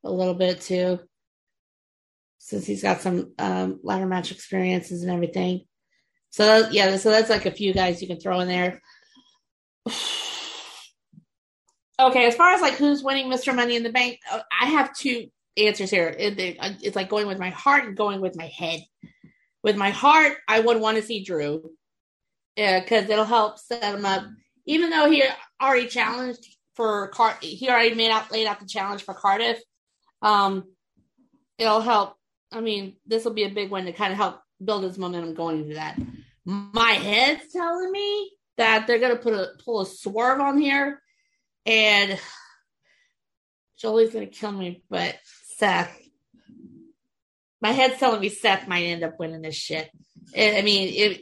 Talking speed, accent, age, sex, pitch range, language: 170 wpm, American, 30-49, female, 185-240 Hz, English